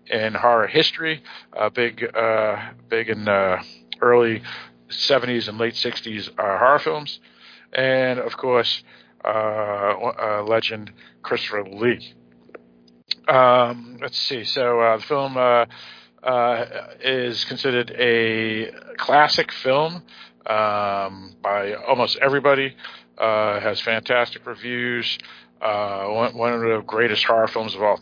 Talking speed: 120 wpm